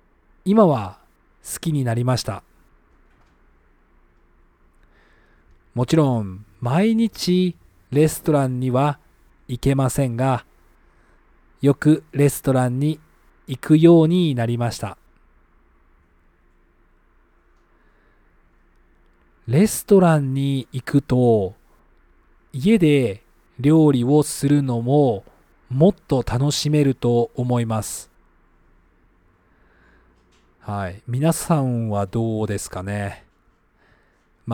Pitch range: 85-145 Hz